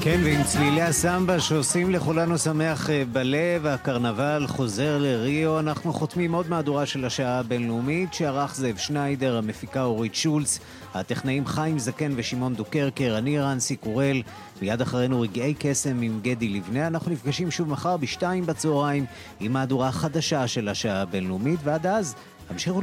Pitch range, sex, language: 120-155 Hz, male, Hebrew